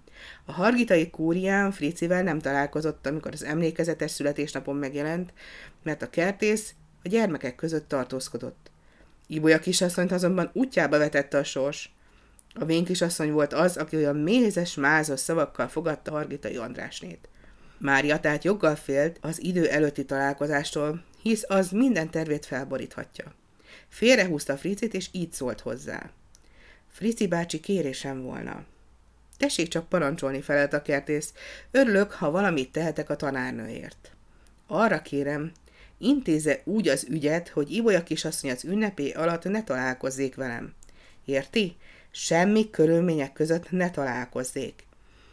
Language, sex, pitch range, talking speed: Hungarian, female, 140-180 Hz, 125 wpm